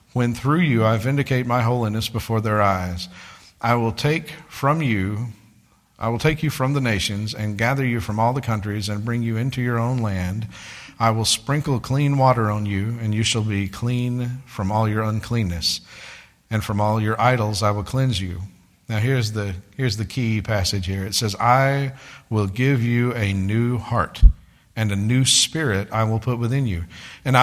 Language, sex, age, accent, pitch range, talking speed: English, male, 50-69, American, 105-125 Hz, 190 wpm